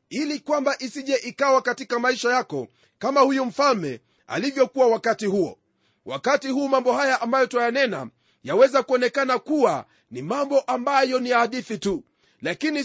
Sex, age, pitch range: male, 40-59, 235-275 Hz